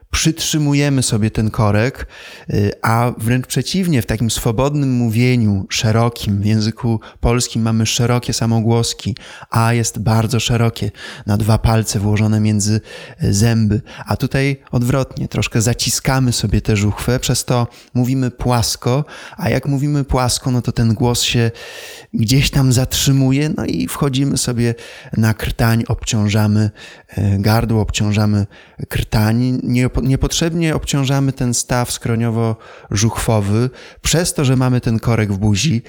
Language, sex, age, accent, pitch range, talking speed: Polish, male, 20-39, native, 110-130 Hz, 125 wpm